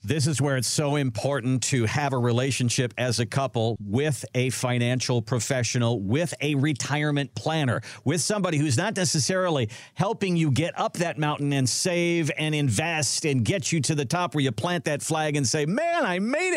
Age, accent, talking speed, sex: 50-69, American, 190 wpm, male